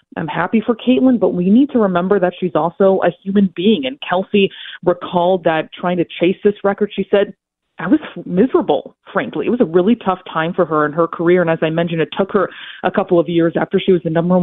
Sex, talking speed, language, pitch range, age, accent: female, 235 wpm, English, 165-200 Hz, 30-49, American